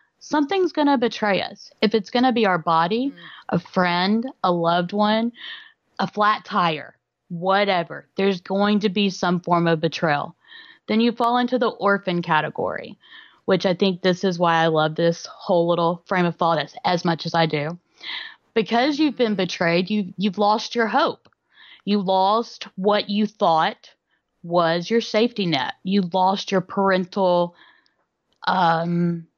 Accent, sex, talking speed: American, female, 160 wpm